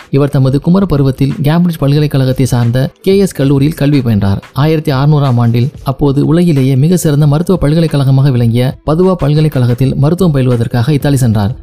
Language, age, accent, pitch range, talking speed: Tamil, 30-49, native, 130-155 Hz, 145 wpm